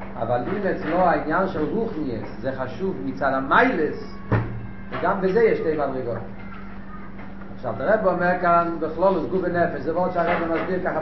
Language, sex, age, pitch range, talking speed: Hebrew, male, 40-59, 145-195 Hz, 145 wpm